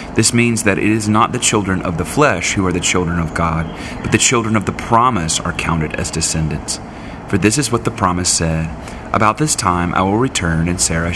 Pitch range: 80-105 Hz